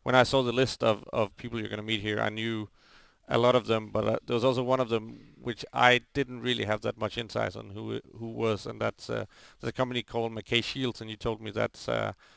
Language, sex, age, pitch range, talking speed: Finnish, male, 40-59, 105-120 Hz, 265 wpm